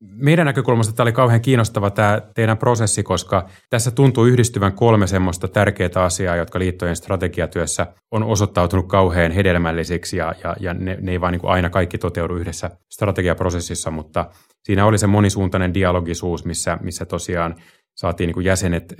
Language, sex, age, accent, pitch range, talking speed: Finnish, male, 30-49, native, 85-100 Hz, 145 wpm